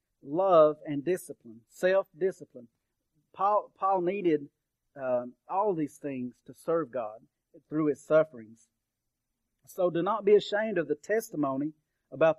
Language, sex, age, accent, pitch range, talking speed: English, male, 50-69, American, 145-185 Hz, 125 wpm